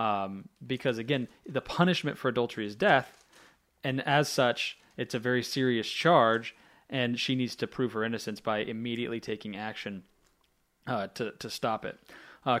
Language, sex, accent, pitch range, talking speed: English, male, American, 115-145 Hz, 160 wpm